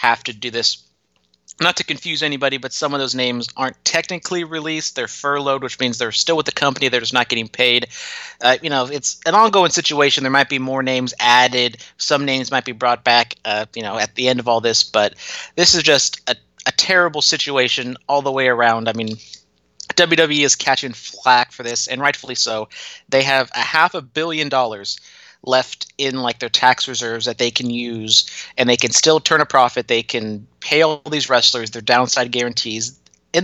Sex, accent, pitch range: male, American, 115-140 Hz